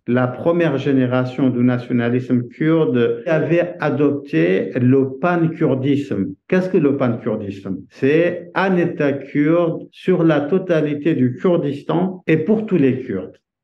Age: 50-69